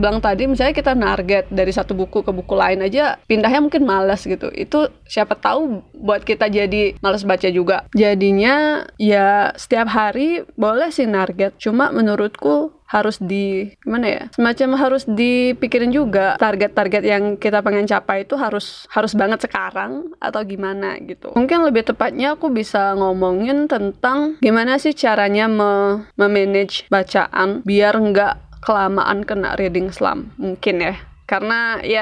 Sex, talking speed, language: female, 145 wpm, Indonesian